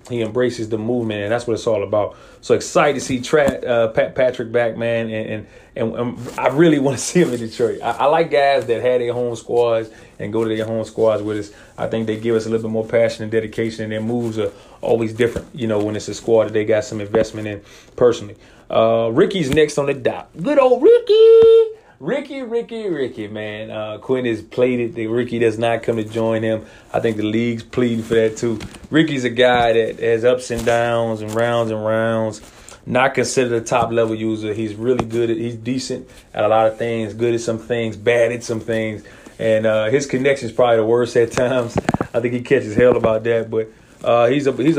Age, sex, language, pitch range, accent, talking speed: 30-49, male, English, 110-125 Hz, American, 230 wpm